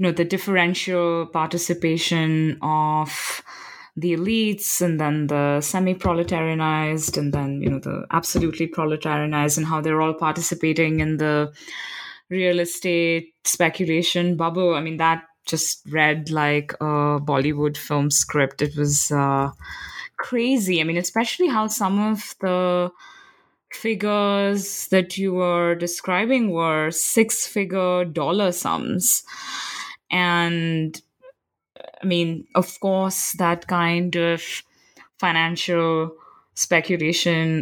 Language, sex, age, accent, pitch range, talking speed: English, female, 20-39, Indian, 155-180 Hz, 110 wpm